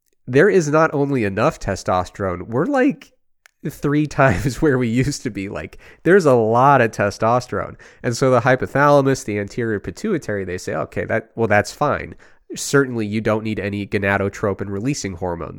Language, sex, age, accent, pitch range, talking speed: English, male, 30-49, American, 95-130 Hz, 160 wpm